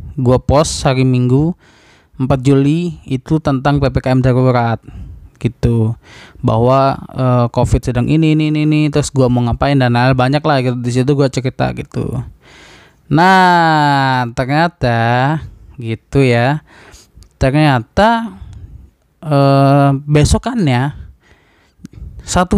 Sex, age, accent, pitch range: male, 20-39, native, 125-150 Hz